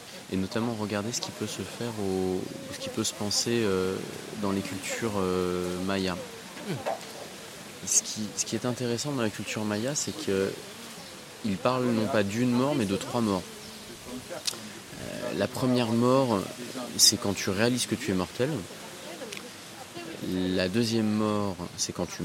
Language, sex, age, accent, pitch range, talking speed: French, male, 20-39, French, 90-115 Hz, 155 wpm